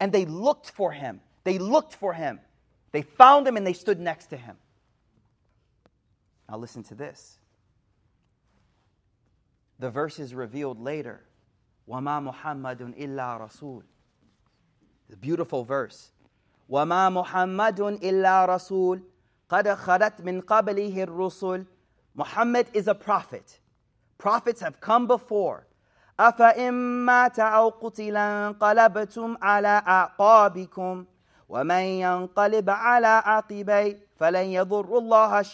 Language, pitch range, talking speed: English, 150-220 Hz, 90 wpm